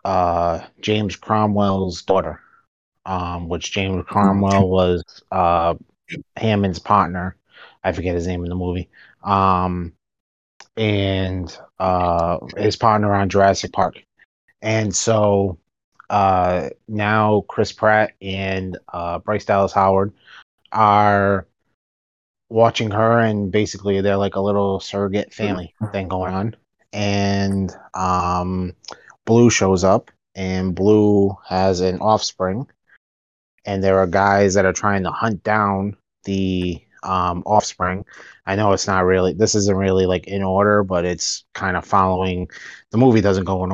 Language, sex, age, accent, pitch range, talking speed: English, male, 30-49, American, 90-105 Hz, 130 wpm